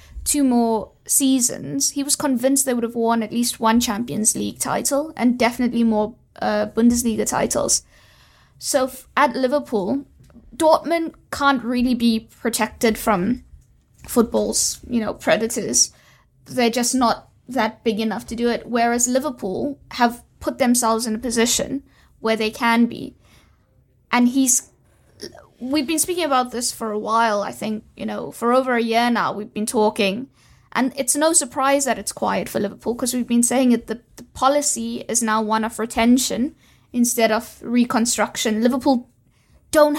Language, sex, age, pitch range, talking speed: English, female, 20-39, 220-260 Hz, 160 wpm